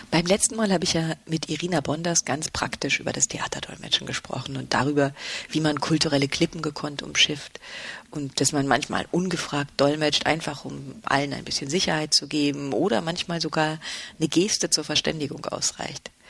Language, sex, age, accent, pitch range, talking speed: German, female, 40-59, German, 145-175 Hz, 165 wpm